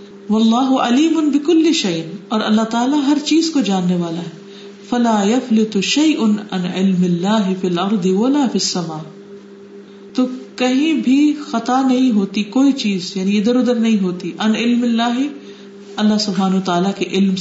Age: 50-69